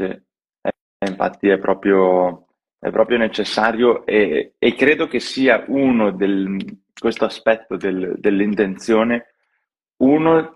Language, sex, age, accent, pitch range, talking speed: Italian, male, 20-39, native, 105-130 Hz, 100 wpm